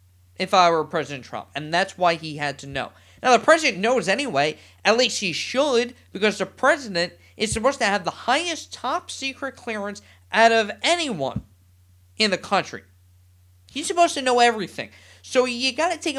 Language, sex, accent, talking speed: English, male, American, 180 wpm